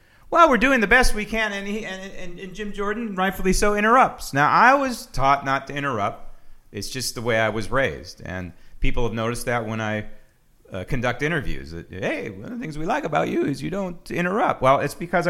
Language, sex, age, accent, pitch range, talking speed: English, male, 40-59, American, 115-190 Hz, 230 wpm